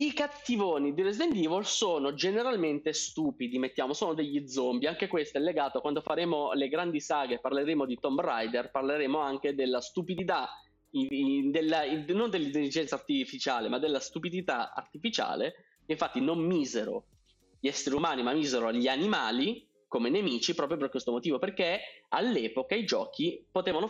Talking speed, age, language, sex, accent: 160 wpm, 20-39, Italian, male, native